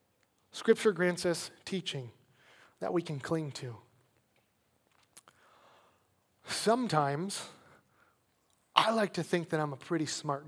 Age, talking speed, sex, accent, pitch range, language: 30-49, 110 wpm, male, American, 150-205 Hz, English